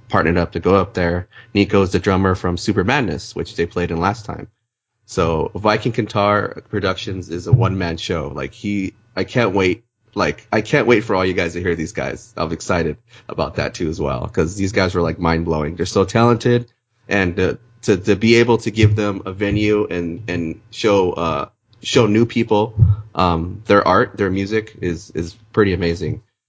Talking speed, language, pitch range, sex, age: 200 wpm, English, 85-115 Hz, male, 30-49